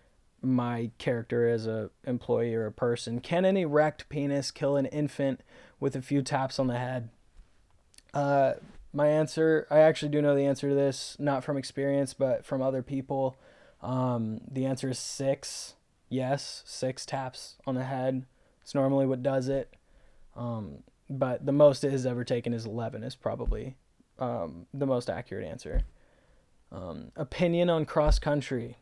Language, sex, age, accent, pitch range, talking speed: English, male, 20-39, American, 125-140 Hz, 160 wpm